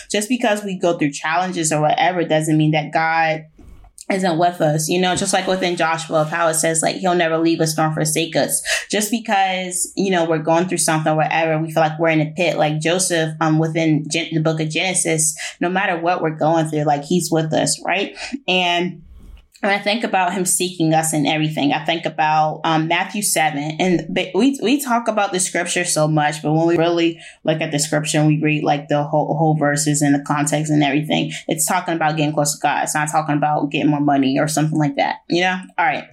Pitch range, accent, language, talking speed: 155-180 Hz, American, English, 230 wpm